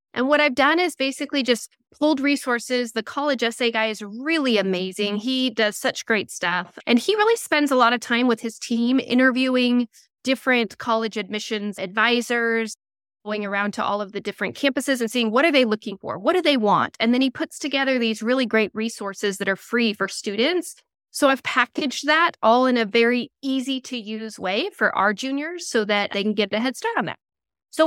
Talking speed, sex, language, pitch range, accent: 205 wpm, female, English, 215-270 Hz, American